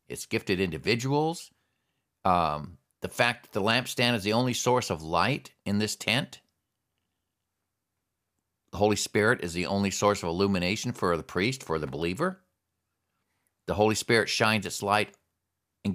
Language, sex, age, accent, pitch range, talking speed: English, male, 50-69, American, 95-125 Hz, 150 wpm